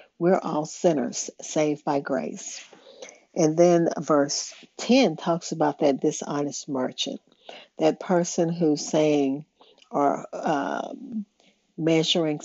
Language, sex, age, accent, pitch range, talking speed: English, female, 50-69, American, 150-185 Hz, 100 wpm